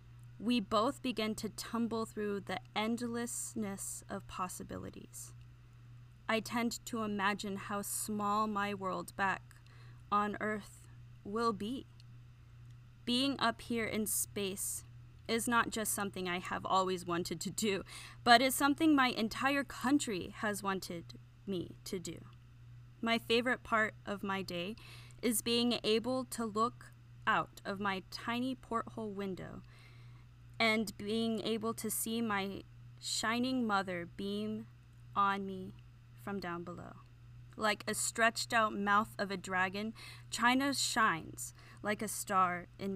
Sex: female